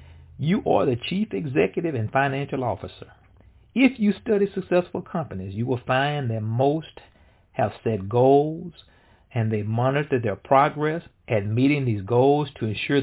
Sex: male